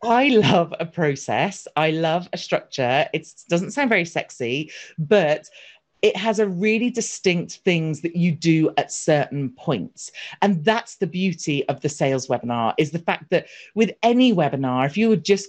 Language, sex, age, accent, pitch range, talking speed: English, female, 40-59, British, 155-210 Hz, 175 wpm